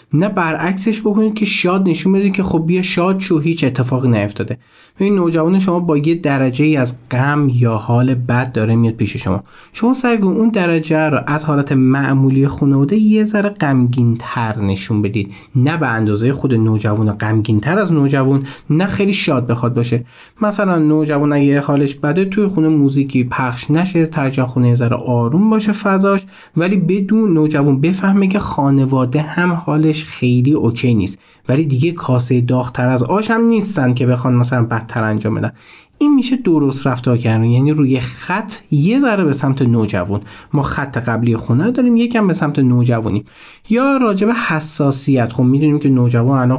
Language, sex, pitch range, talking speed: Persian, male, 120-175 Hz, 165 wpm